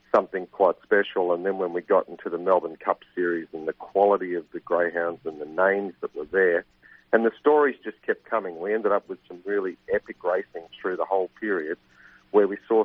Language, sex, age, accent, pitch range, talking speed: English, male, 50-69, Australian, 90-110 Hz, 215 wpm